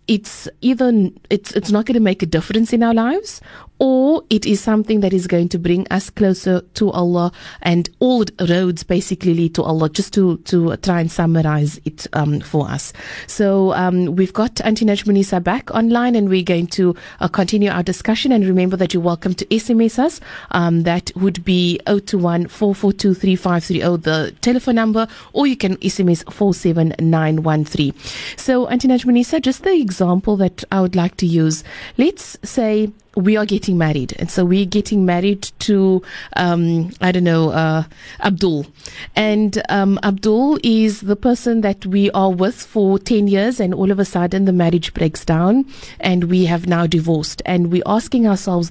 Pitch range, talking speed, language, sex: 175-215 Hz, 185 wpm, English, female